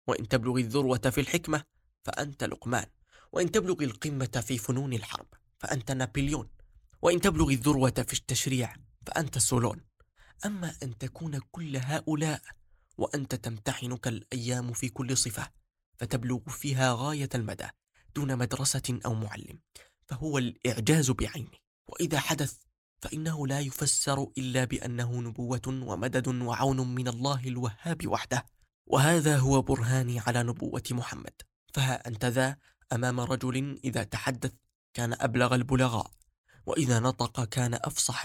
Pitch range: 120-140 Hz